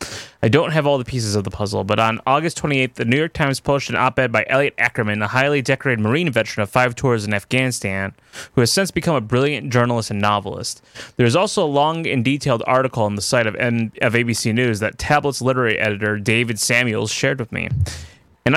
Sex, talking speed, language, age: male, 215 wpm, English, 20-39